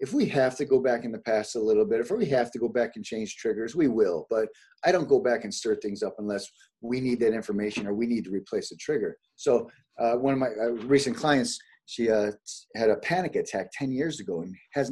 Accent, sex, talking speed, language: American, male, 255 wpm, English